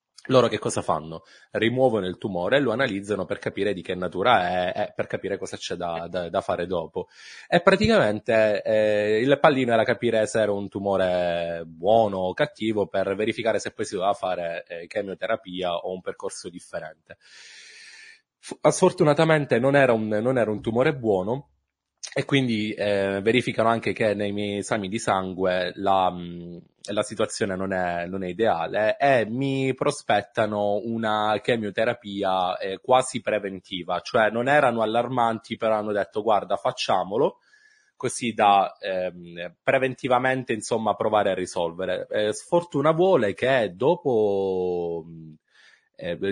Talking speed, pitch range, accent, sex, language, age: 140 wpm, 95-130 Hz, native, male, Italian, 20-39